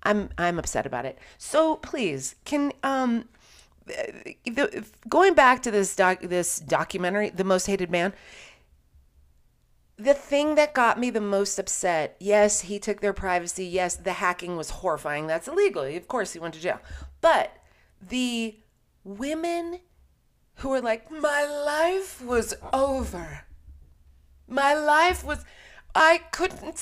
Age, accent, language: 30-49, American, English